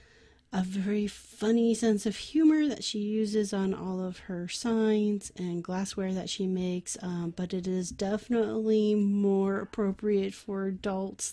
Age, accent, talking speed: 30-49, American, 150 wpm